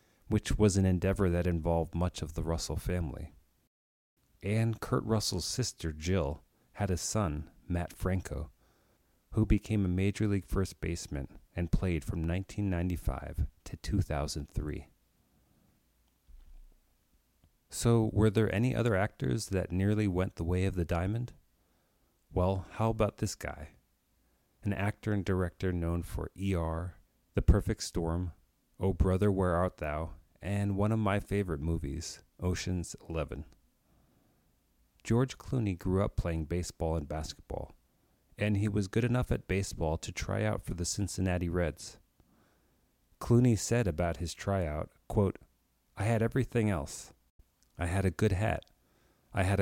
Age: 40-59